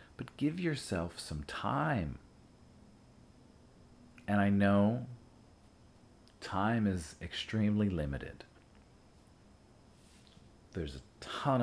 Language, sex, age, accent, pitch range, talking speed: English, male, 40-59, American, 85-110 Hz, 75 wpm